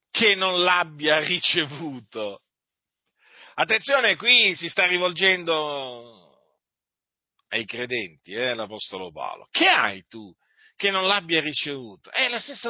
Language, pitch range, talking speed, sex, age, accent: Italian, 155-260 Hz, 115 wpm, male, 40-59, native